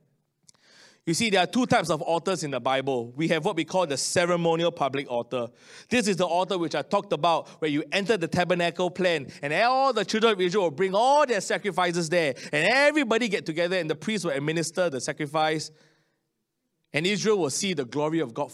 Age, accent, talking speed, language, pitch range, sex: 20-39, Malaysian, 210 wpm, English, 145-195 Hz, male